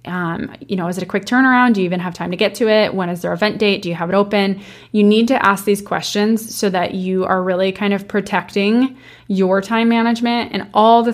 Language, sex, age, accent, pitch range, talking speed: English, female, 20-39, American, 185-225 Hz, 255 wpm